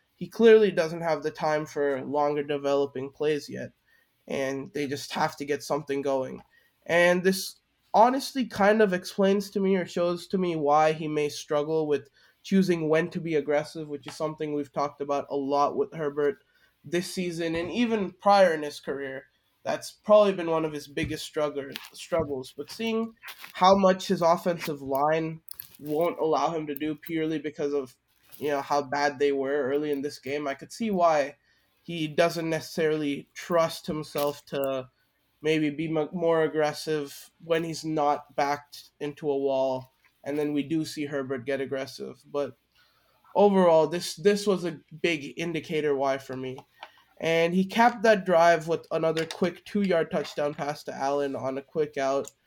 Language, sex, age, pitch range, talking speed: English, male, 20-39, 145-170 Hz, 170 wpm